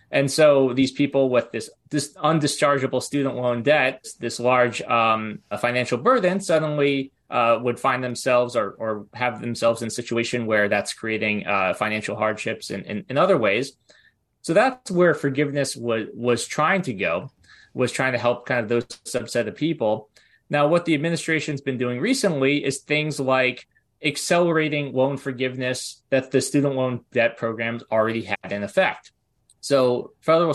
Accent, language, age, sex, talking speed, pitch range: American, English, 20-39, male, 165 wpm, 115-140 Hz